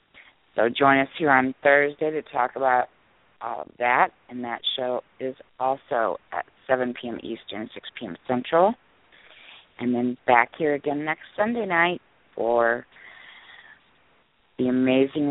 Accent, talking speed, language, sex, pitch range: American, 135 wpm, English, female, 120-150 Hz